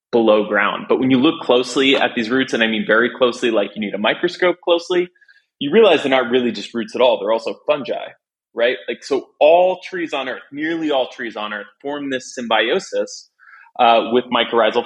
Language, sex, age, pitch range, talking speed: English, male, 20-39, 110-140 Hz, 205 wpm